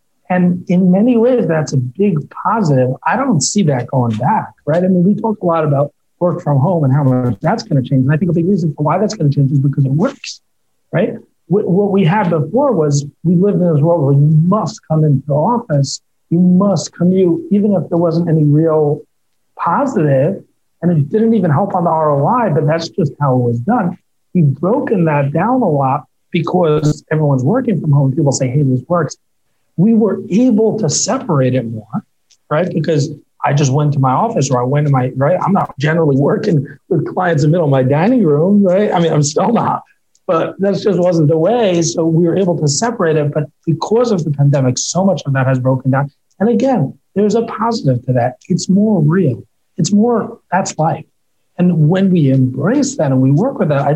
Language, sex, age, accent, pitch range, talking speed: English, male, 40-59, American, 145-195 Hz, 220 wpm